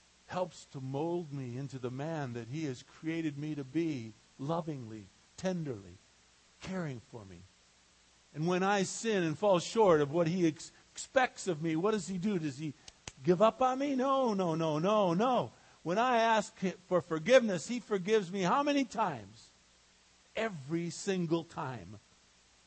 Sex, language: male, English